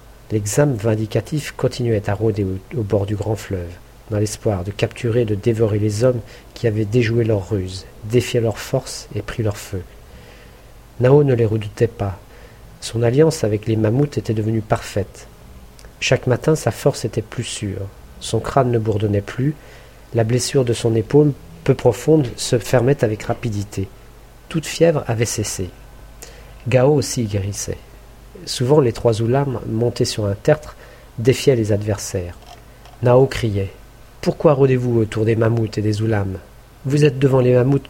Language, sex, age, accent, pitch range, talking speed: French, male, 50-69, French, 110-125 Hz, 160 wpm